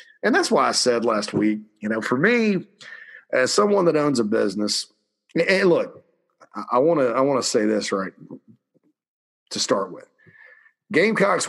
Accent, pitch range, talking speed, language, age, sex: American, 105-135 Hz, 160 wpm, English, 40-59, male